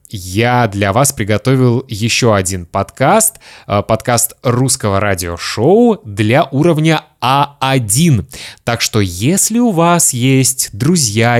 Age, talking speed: 20-39, 105 wpm